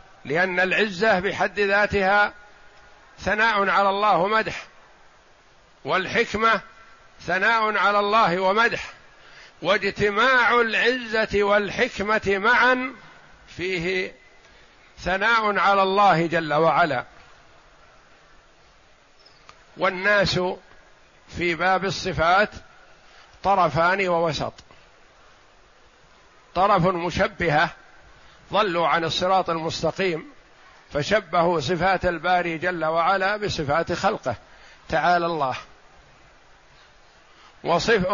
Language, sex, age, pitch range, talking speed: Arabic, male, 50-69, 180-220 Hz, 70 wpm